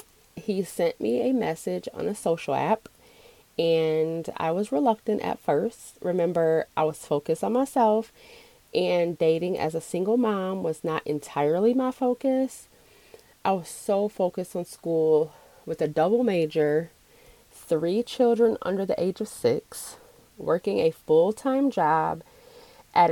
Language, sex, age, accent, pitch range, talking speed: English, female, 30-49, American, 165-250 Hz, 140 wpm